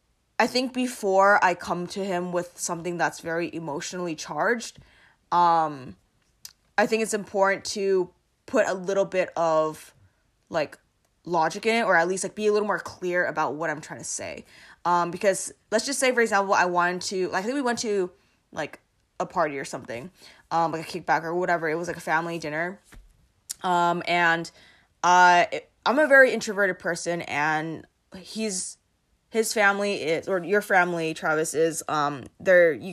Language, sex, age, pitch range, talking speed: English, female, 20-39, 165-200 Hz, 175 wpm